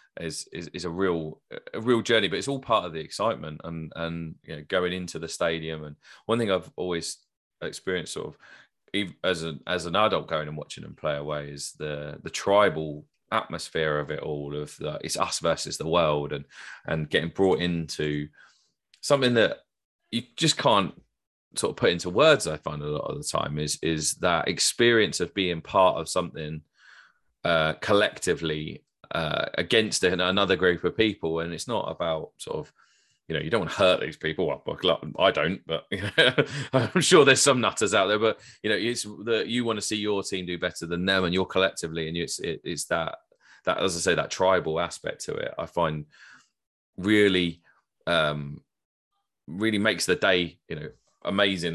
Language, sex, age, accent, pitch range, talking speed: English, male, 30-49, British, 80-105 Hz, 195 wpm